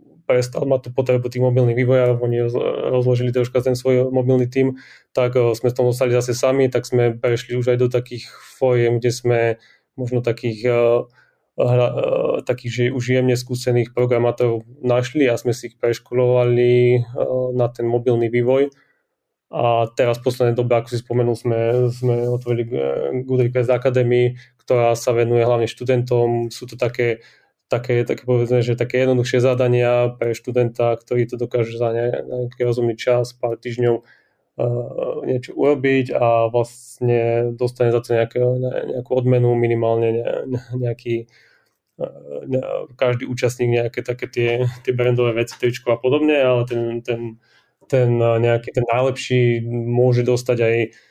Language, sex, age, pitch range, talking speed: Slovak, male, 20-39, 120-125 Hz, 150 wpm